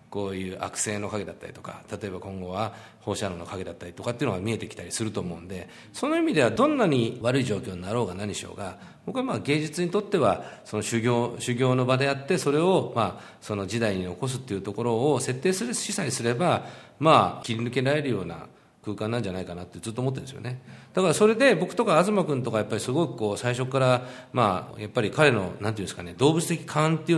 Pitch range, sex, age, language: 105-170 Hz, male, 40-59, Japanese